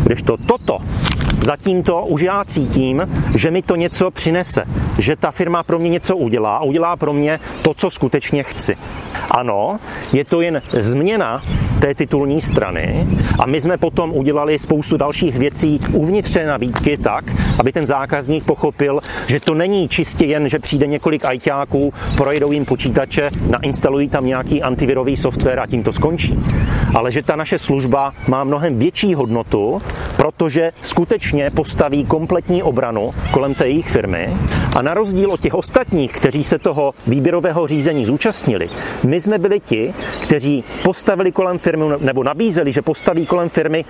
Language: Czech